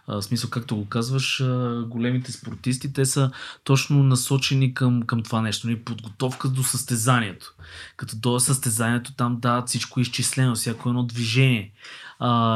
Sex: male